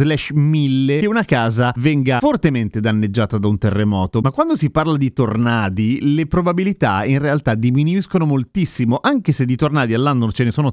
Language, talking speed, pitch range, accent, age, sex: Italian, 175 wpm, 120-155 Hz, native, 30-49, male